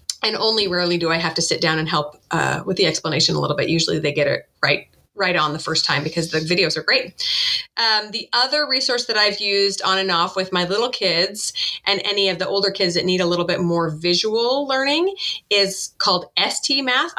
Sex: female